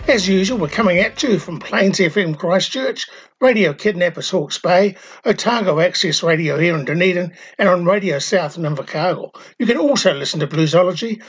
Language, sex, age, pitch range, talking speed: English, male, 60-79, 170-205 Hz, 170 wpm